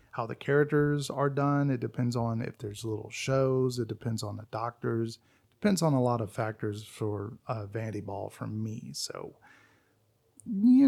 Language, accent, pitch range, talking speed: English, American, 115-140 Hz, 170 wpm